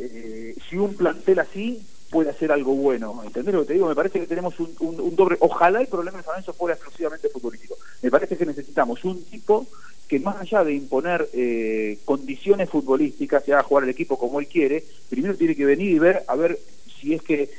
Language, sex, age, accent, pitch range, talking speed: Spanish, male, 40-59, Argentinian, 125-190 Hz, 215 wpm